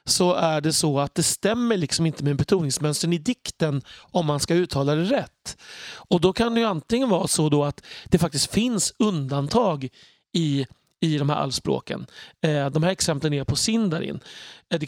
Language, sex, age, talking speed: Swedish, male, 30-49, 180 wpm